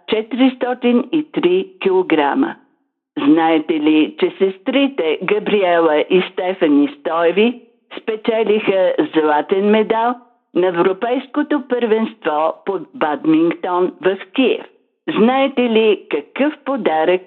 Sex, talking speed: female, 85 wpm